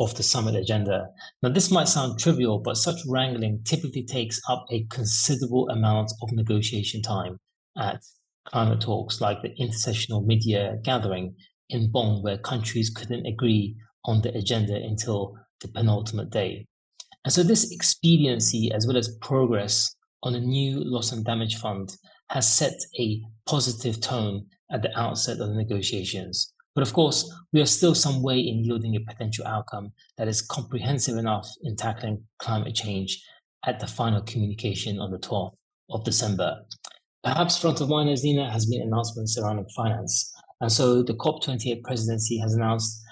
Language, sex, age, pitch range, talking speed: English, male, 30-49, 110-130 Hz, 160 wpm